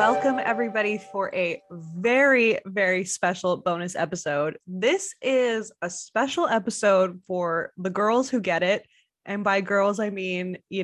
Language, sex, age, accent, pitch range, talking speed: English, female, 20-39, American, 180-230 Hz, 145 wpm